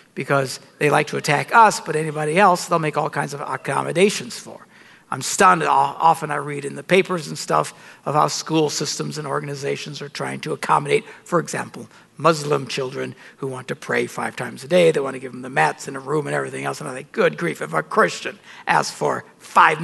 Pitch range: 145-190 Hz